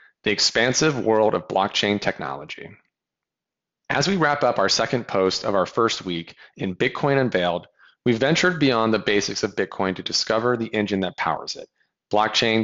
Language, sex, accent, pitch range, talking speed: English, male, American, 100-130 Hz, 165 wpm